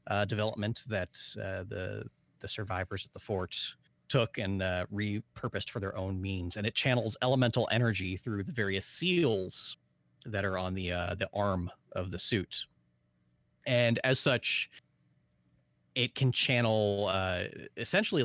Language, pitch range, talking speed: English, 95-115 Hz, 150 wpm